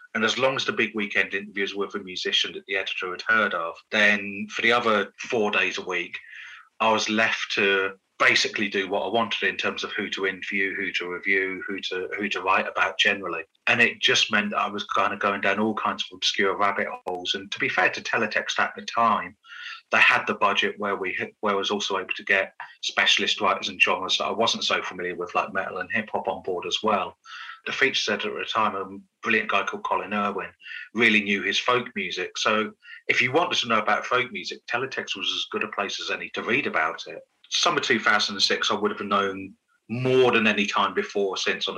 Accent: British